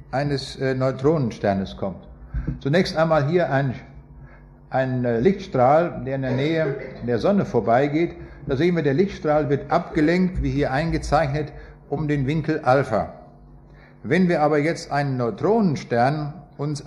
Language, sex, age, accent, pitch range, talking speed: German, male, 60-79, German, 125-160 Hz, 130 wpm